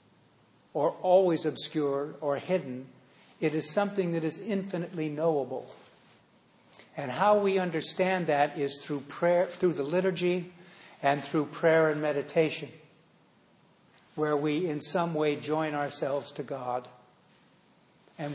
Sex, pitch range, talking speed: male, 140-165 Hz, 125 wpm